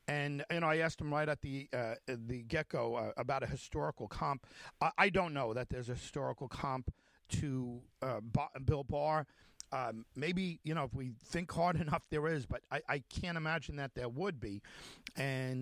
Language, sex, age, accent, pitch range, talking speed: English, male, 50-69, American, 120-155 Hz, 200 wpm